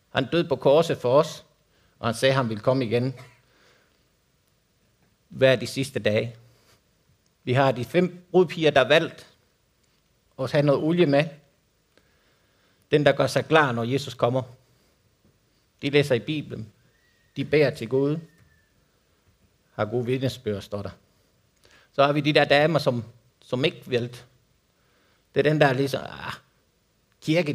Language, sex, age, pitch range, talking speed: Danish, male, 50-69, 115-150 Hz, 150 wpm